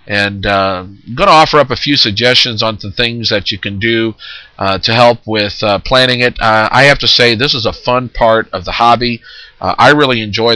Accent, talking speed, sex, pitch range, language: American, 225 wpm, male, 105-130 Hz, English